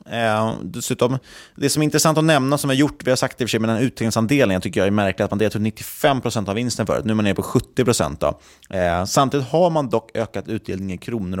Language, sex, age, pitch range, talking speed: Swedish, male, 20-39, 95-125 Hz, 230 wpm